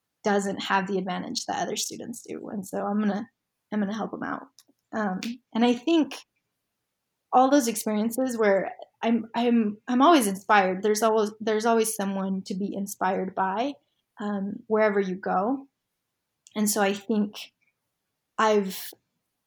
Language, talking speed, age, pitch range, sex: English, 155 wpm, 20-39, 195-230 Hz, female